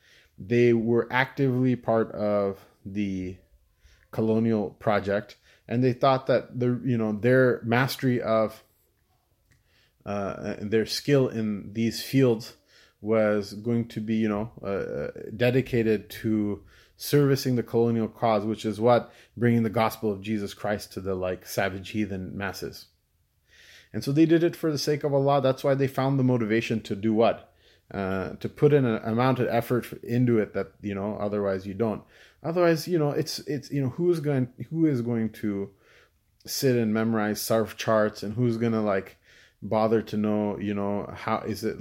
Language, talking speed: English, 170 wpm